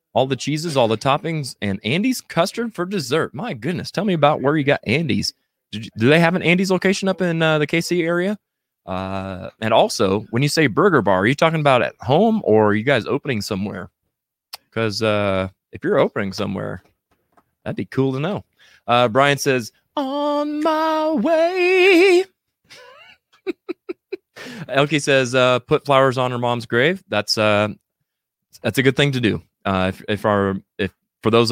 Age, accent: 20-39, American